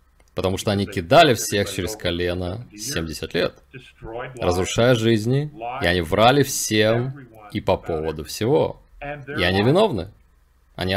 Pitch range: 90-125 Hz